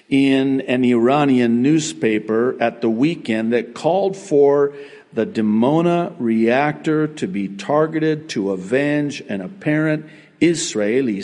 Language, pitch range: English, 115-150 Hz